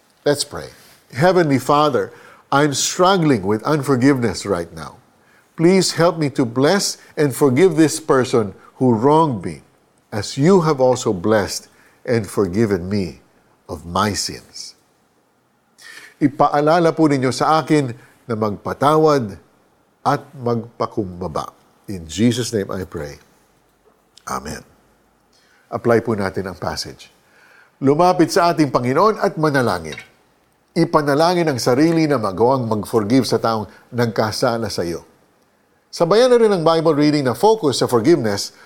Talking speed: 125 wpm